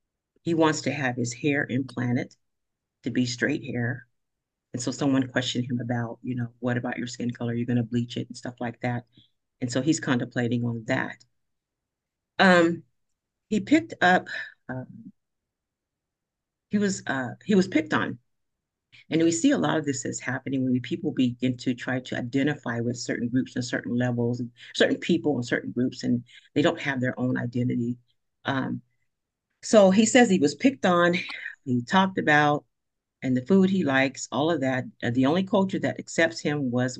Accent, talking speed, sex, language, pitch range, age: American, 180 wpm, female, English, 120-160 Hz, 40-59